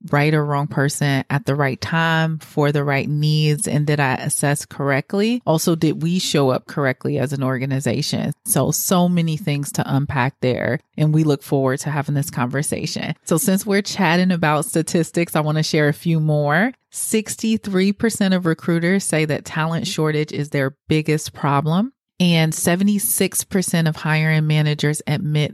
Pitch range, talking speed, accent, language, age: 140-170 Hz, 165 wpm, American, English, 30-49